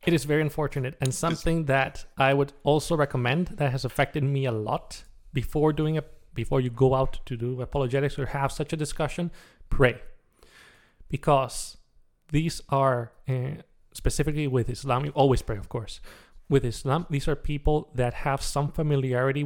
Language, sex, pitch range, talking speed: English, male, 125-145 Hz, 165 wpm